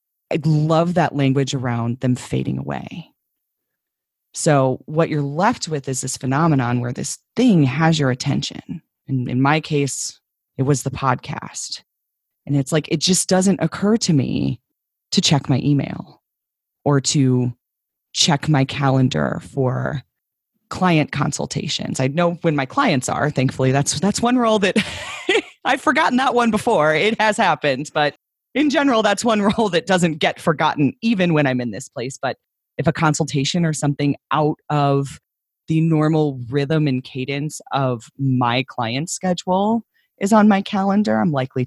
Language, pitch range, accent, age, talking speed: English, 135-175 Hz, American, 30-49, 160 wpm